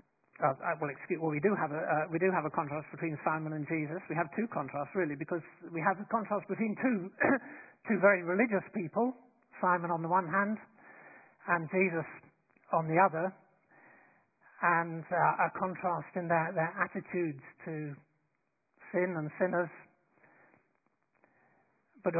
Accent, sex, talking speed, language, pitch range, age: British, male, 155 wpm, English, 165-190 Hz, 60-79